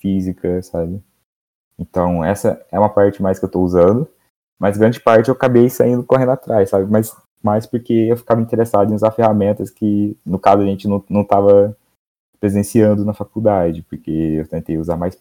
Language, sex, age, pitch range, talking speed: Portuguese, male, 20-39, 85-105 Hz, 180 wpm